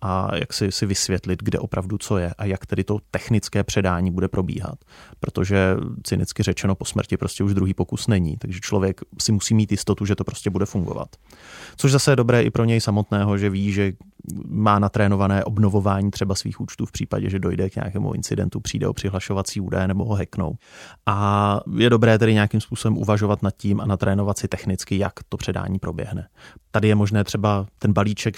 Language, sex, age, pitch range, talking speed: Czech, male, 30-49, 95-105 Hz, 195 wpm